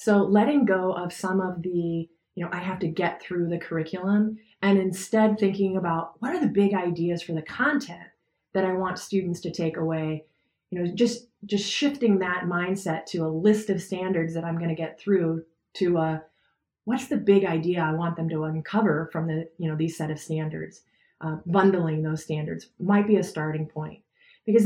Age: 30-49